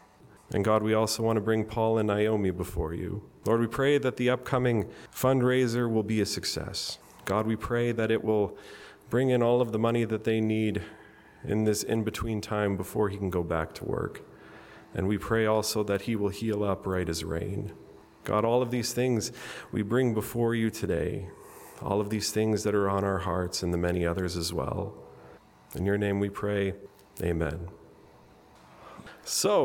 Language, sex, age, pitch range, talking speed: English, male, 40-59, 100-130 Hz, 190 wpm